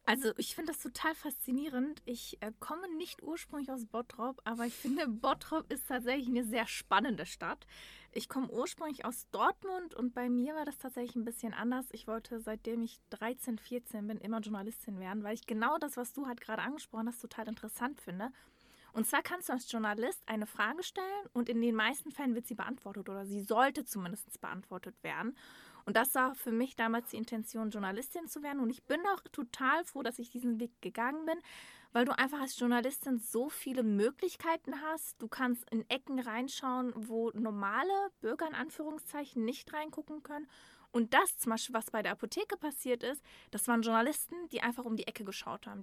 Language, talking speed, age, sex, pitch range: German, 195 wpm, 20-39, female, 225-285 Hz